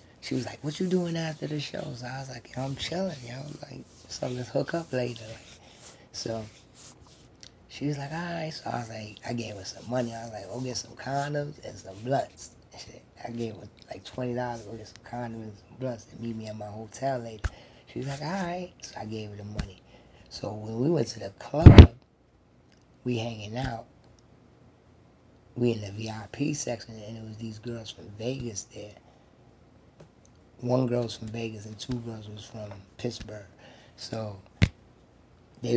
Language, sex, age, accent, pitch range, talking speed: English, male, 20-39, American, 110-125 Hz, 195 wpm